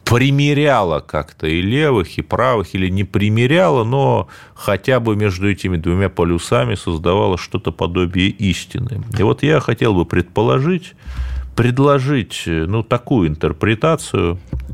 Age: 30-49